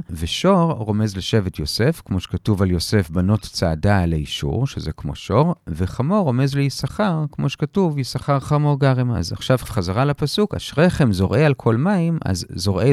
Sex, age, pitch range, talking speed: male, 40-59, 95-140 Hz, 160 wpm